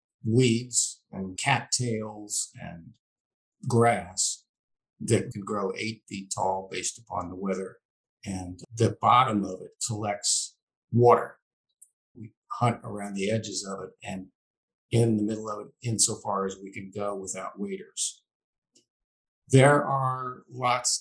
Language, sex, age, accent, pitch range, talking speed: English, male, 50-69, American, 100-120 Hz, 130 wpm